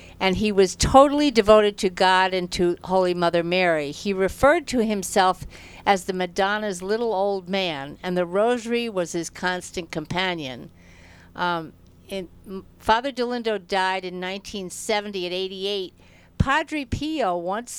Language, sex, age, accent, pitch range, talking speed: English, female, 60-79, American, 175-220 Hz, 140 wpm